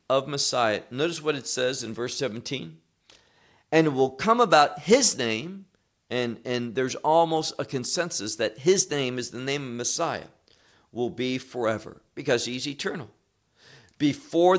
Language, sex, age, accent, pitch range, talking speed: English, male, 50-69, American, 115-165 Hz, 150 wpm